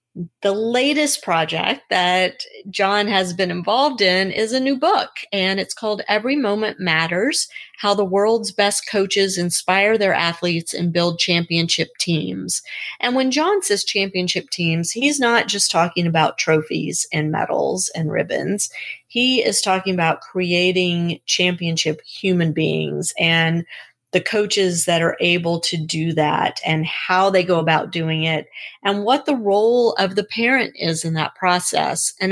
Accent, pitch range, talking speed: American, 165-205 Hz, 155 wpm